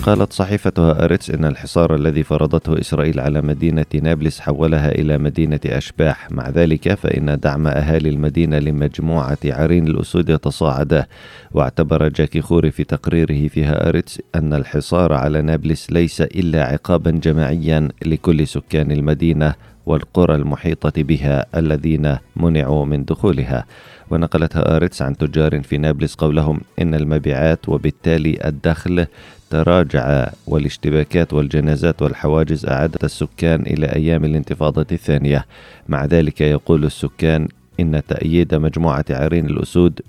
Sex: male